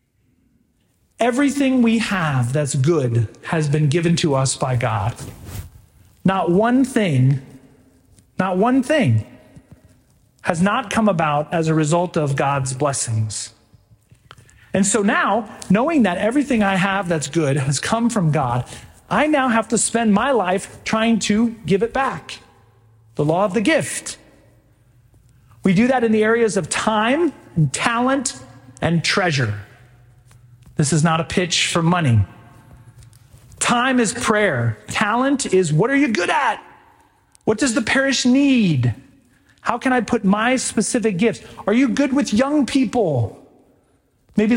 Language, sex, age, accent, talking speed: English, male, 40-59, American, 145 wpm